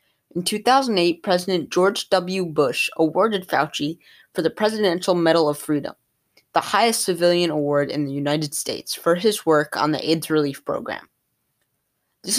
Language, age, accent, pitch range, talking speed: English, 20-39, American, 150-185 Hz, 150 wpm